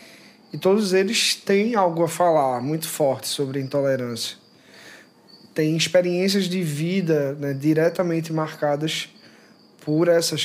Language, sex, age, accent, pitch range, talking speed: Portuguese, male, 20-39, Brazilian, 150-180 Hz, 115 wpm